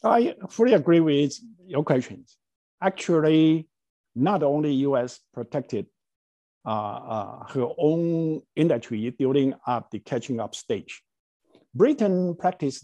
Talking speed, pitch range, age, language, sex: 110 wpm, 130-165 Hz, 50-69, English, male